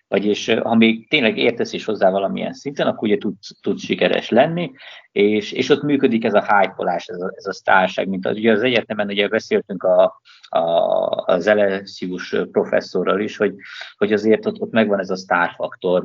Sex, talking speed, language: male, 175 wpm, Hungarian